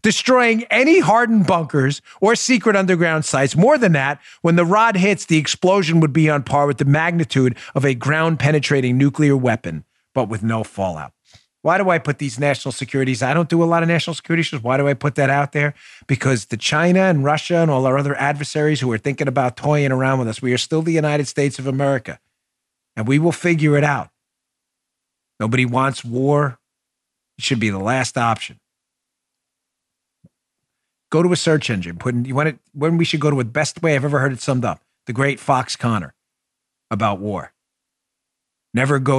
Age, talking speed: 40-59, 200 wpm